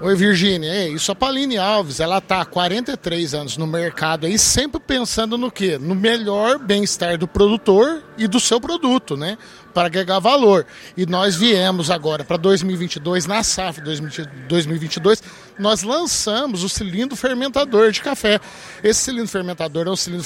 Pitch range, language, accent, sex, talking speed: 180-230 Hz, Portuguese, Brazilian, male, 160 wpm